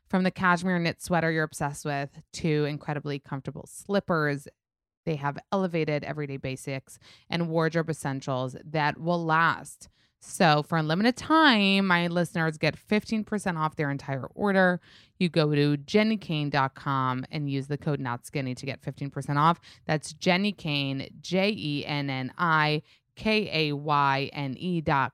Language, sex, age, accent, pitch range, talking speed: English, female, 20-39, American, 140-175 Hz, 125 wpm